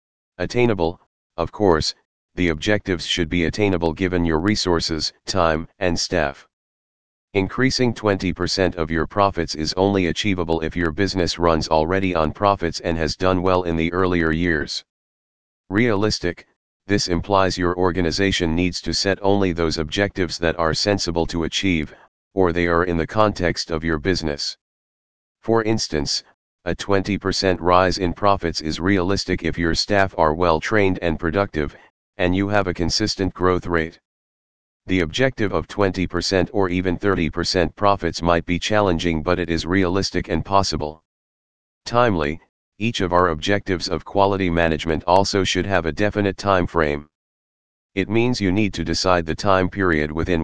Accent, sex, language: American, male, English